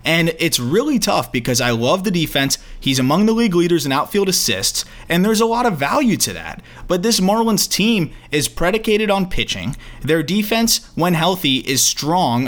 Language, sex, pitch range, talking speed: English, male, 125-175 Hz, 190 wpm